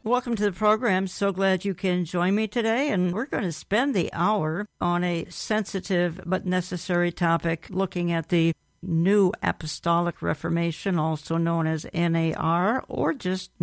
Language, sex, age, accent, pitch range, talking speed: English, female, 60-79, American, 175-200 Hz, 160 wpm